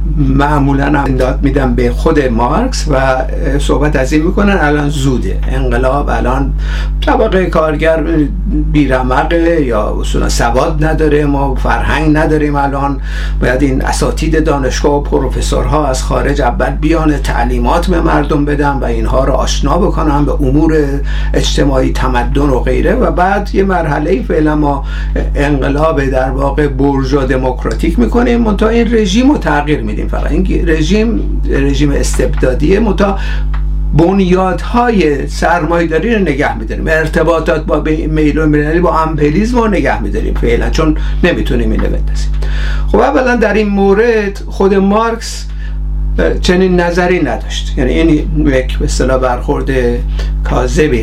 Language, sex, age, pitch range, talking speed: Persian, male, 60-79, 130-165 Hz, 130 wpm